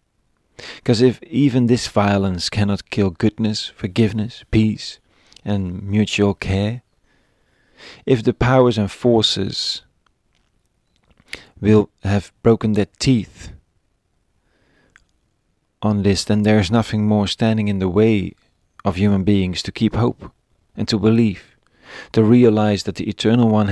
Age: 40-59